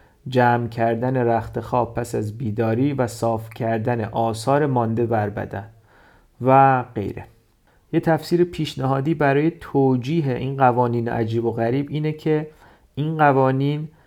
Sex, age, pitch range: male, 30-49, 115-140 Hz